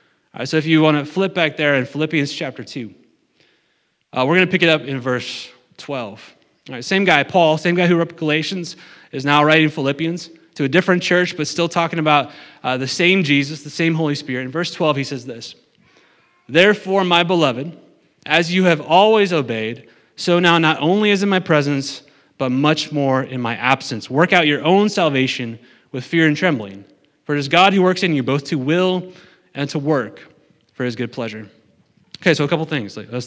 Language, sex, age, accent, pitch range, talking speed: English, male, 30-49, American, 140-185 Hz, 205 wpm